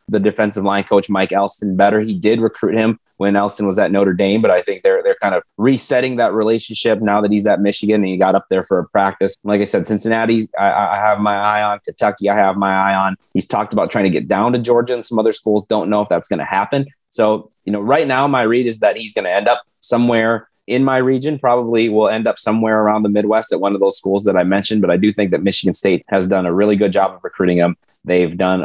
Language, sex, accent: English, male, American